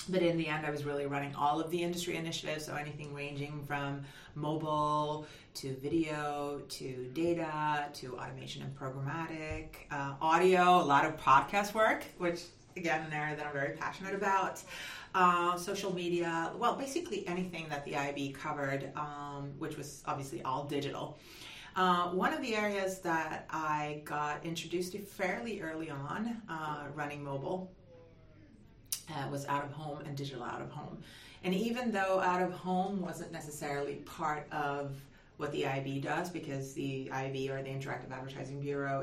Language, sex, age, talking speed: English, female, 30-49, 165 wpm